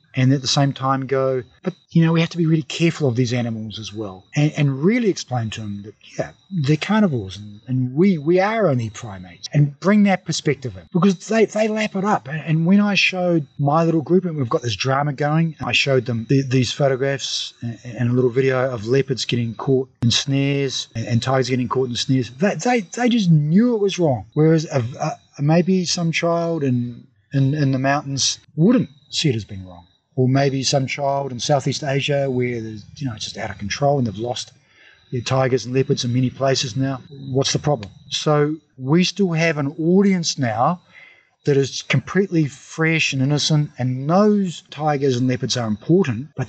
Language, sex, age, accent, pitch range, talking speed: English, male, 30-49, Australian, 125-160 Hz, 205 wpm